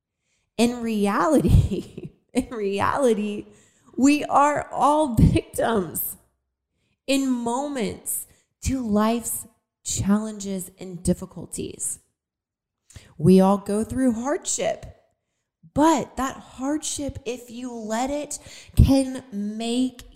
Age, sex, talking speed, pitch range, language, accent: 20-39, female, 85 wpm, 180-255 Hz, English, American